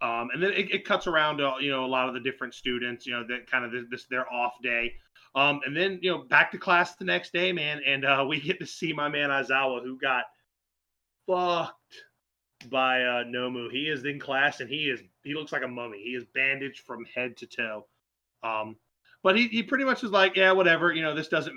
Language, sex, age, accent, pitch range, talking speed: English, male, 30-49, American, 120-160 Hz, 240 wpm